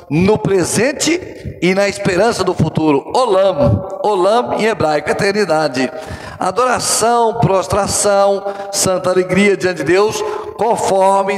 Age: 60-79